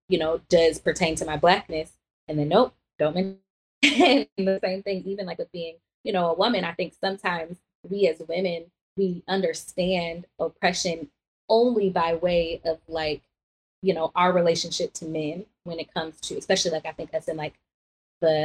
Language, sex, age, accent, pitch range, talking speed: English, female, 20-39, American, 160-190 Hz, 185 wpm